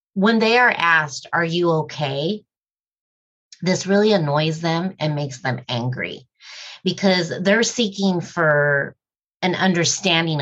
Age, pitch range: 30-49, 150-190 Hz